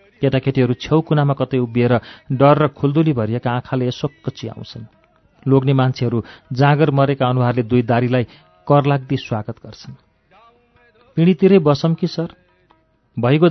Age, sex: 40-59, male